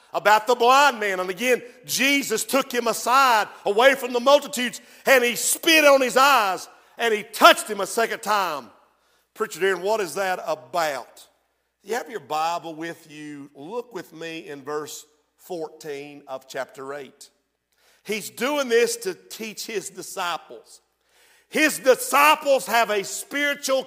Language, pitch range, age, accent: English, 220-315 Hz, 50-69, American